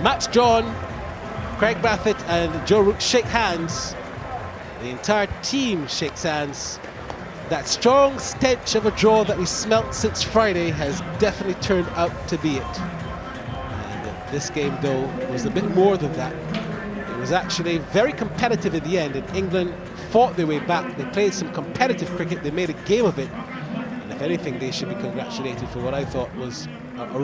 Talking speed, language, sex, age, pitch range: 175 wpm, English, male, 30-49, 140-195 Hz